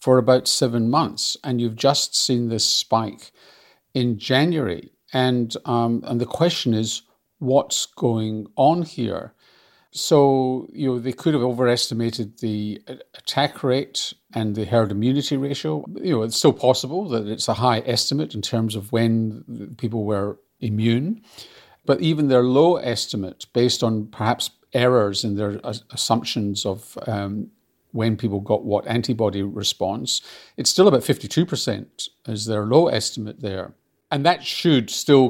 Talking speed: 145 wpm